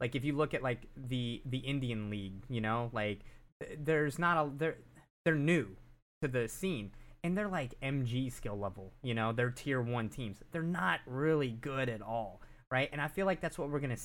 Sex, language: male, English